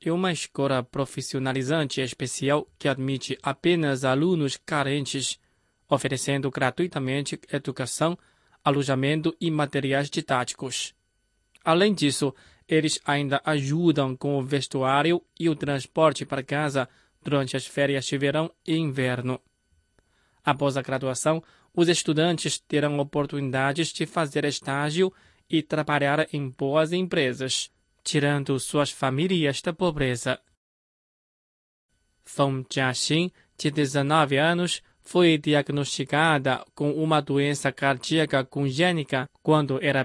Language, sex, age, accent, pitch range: Chinese, male, 20-39, Brazilian, 135-155 Hz